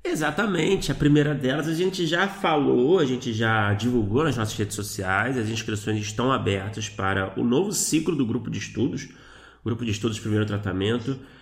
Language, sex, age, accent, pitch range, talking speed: Portuguese, male, 20-39, Brazilian, 105-140 Hz, 180 wpm